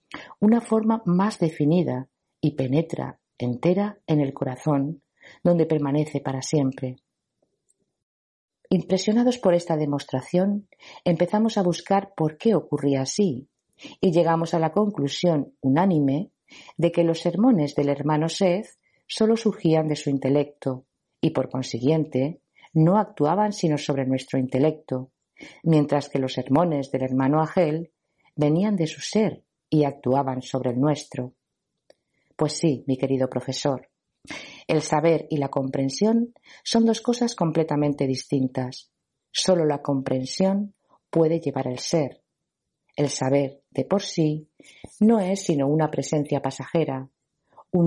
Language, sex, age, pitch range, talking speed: Spanish, female, 40-59, 135-175 Hz, 130 wpm